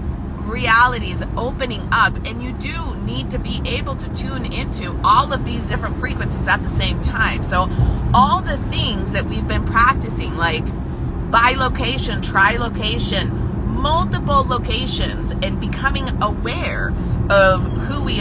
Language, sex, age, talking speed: English, female, 30-49, 140 wpm